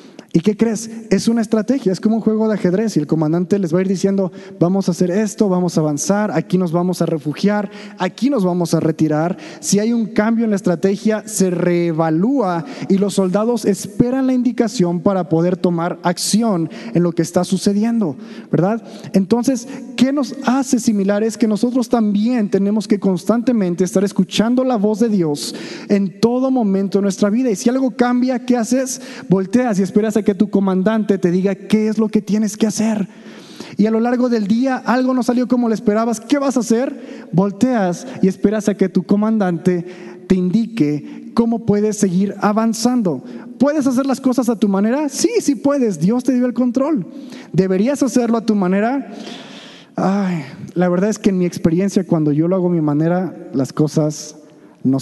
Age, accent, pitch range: 30-49, Mexican, 180-240 Hz